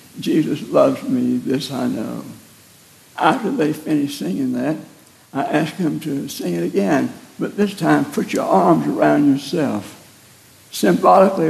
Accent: American